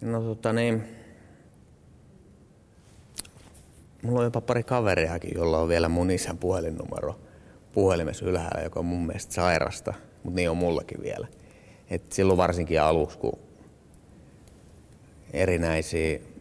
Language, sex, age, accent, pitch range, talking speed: Finnish, male, 30-49, native, 80-110 Hz, 115 wpm